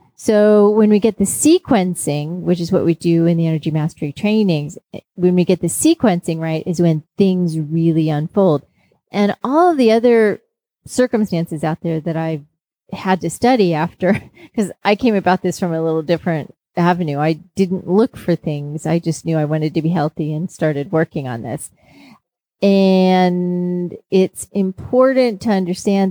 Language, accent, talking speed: English, American, 170 wpm